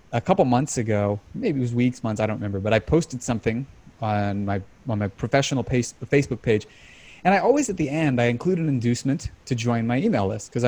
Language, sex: English, male